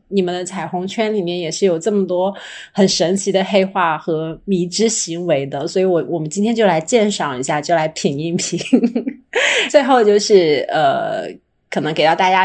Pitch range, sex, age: 170-215 Hz, female, 30-49